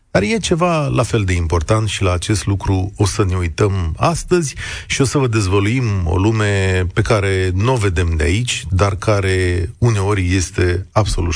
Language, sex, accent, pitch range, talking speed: Romanian, male, native, 95-130 Hz, 185 wpm